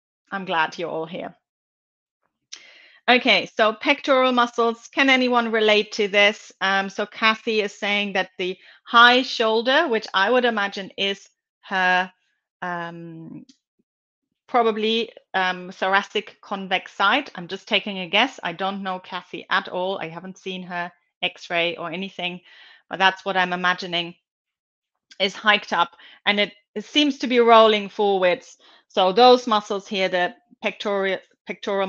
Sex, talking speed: female, 145 wpm